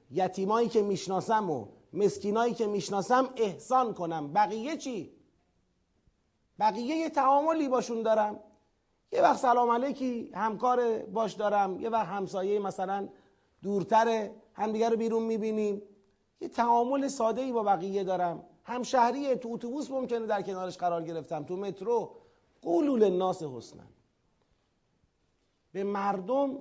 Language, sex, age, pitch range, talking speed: Persian, male, 40-59, 185-240 Hz, 115 wpm